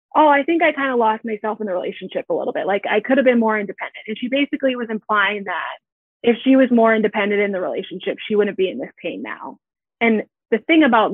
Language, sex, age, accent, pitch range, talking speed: English, female, 20-39, American, 210-260 Hz, 250 wpm